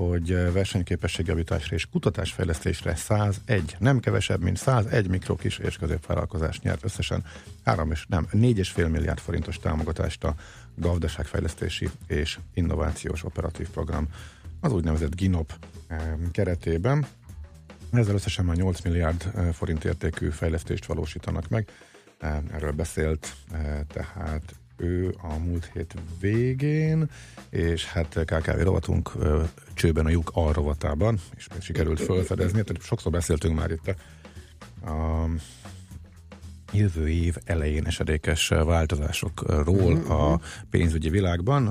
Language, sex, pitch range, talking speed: Hungarian, male, 80-100 Hz, 105 wpm